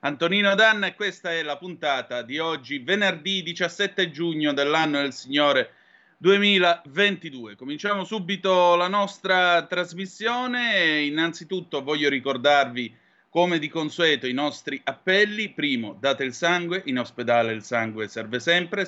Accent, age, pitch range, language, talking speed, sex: native, 30-49, 130-185 Hz, Italian, 125 wpm, male